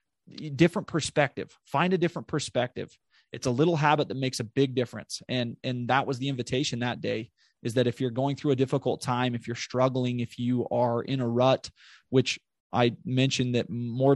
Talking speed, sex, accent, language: 195 wpm, male, American, English